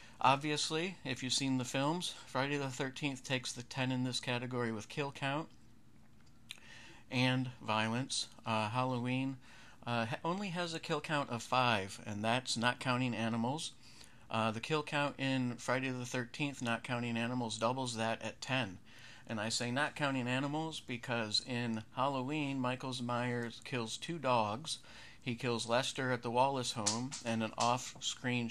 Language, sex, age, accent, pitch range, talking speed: English, male, 50-69, American, 110-130 Hz, 155 wpm